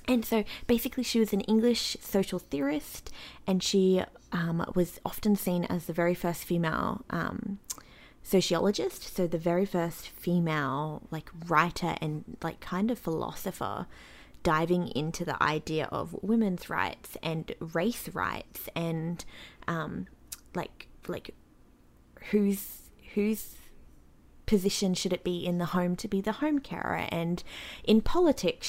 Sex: female